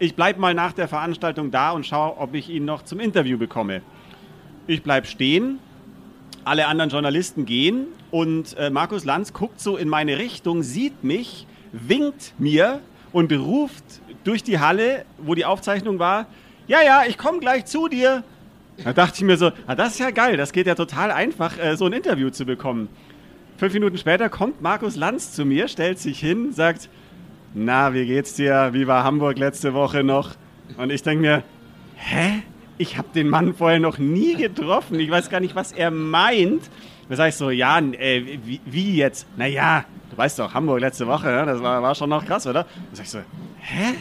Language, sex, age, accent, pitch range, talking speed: German, male, 40-59, German, 145-195 Hz, 195 wpm